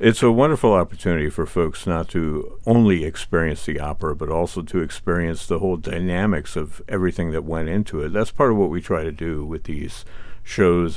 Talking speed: 195 wpm